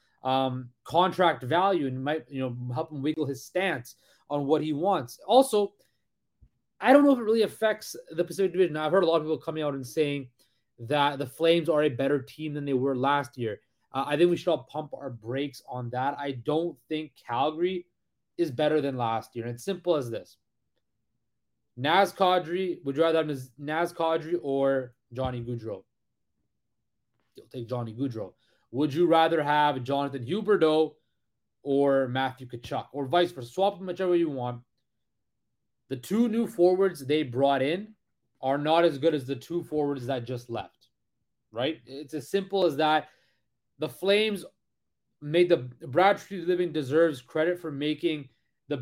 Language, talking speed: English, 175 wpm